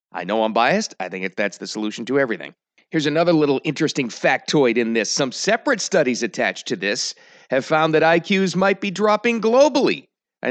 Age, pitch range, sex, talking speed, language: 40-59, 135-220 Hz, male, 190 wpm, English